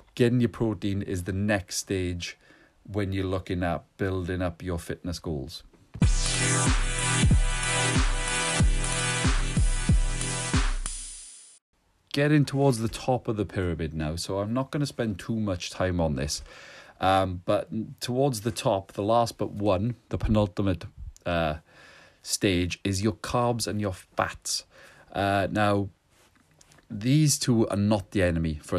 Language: English